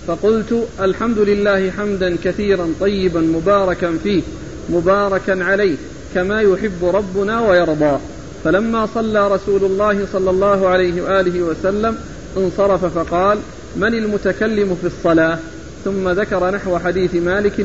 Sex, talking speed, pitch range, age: male, 115 wpm, 170-195 Hz, 40-59